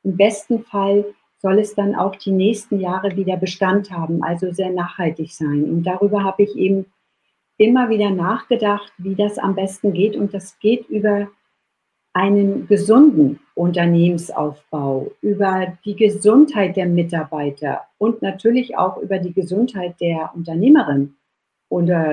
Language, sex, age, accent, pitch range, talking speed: German, female, 50-69, German, 175-210 Hz, 140 wpm